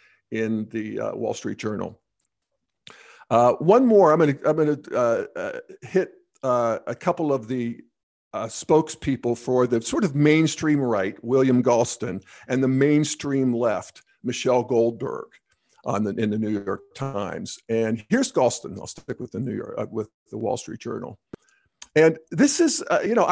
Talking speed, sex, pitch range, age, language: 165 wpm, male, 120-175 Hz, 50-69, English